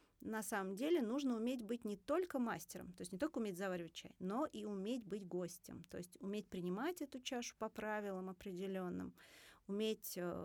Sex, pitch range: female, 185-245 Hz